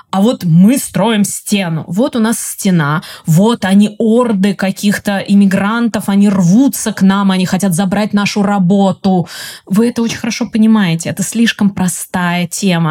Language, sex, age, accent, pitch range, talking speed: Russian, female, 20-39, native, 180-210 Hz, 150 wpm